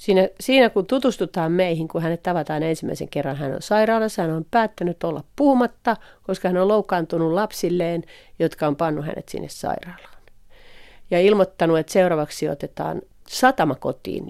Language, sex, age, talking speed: Finnish, female, 40-59, 145 wpm